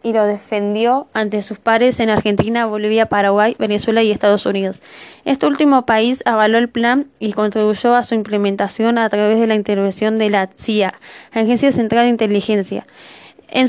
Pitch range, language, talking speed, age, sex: 215-245 Hz, Spanish, 165 wpm, 20-39, female